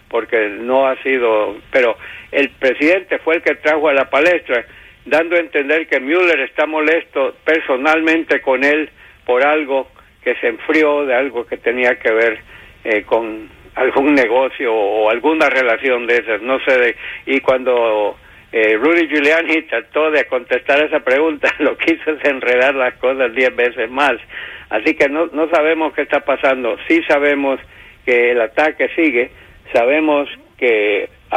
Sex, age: male, 60-79